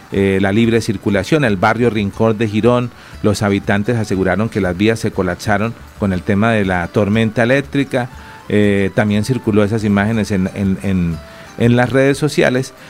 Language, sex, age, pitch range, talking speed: Spanish, male, 40-59, 100-125 Hz, 160 wpm